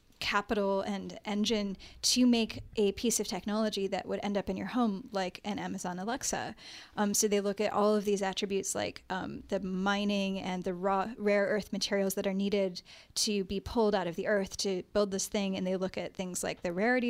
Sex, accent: female, American